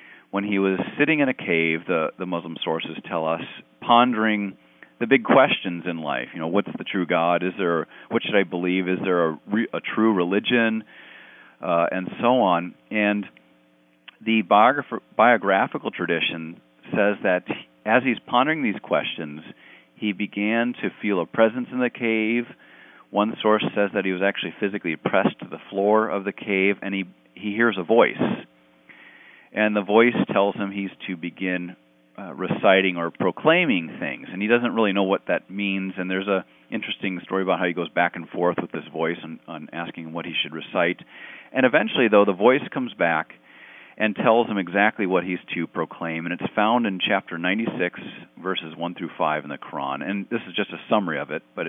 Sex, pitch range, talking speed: male, 85-105 Hz, 190 wpm